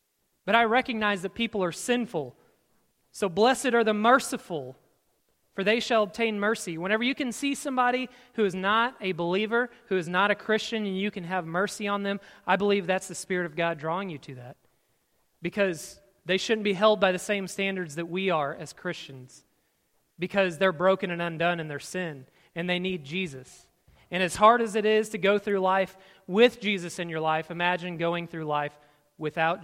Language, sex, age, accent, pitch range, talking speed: English, male, 30-49, American, 160-205 Hz, 195 wpm